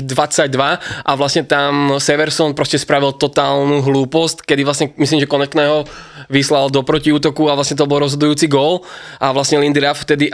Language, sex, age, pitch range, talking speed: Slovak, male, 20-39, 140-150 Hz, 165 wpm